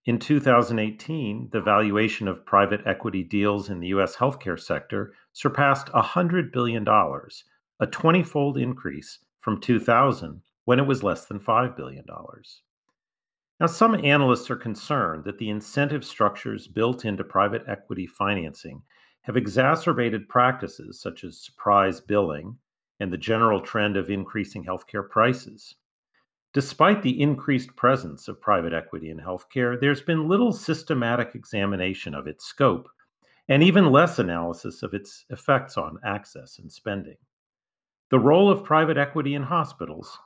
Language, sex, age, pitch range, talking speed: English, male, 40-59, 100-140 Hz, 135 wpm